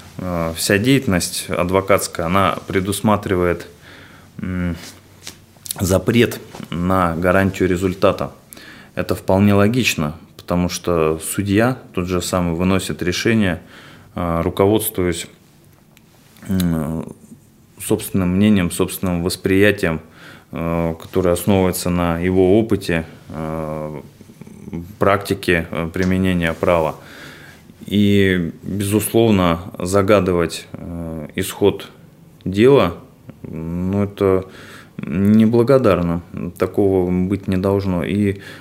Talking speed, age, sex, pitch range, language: 75 wpm, 20-39, male, 85-100 Hz, Russian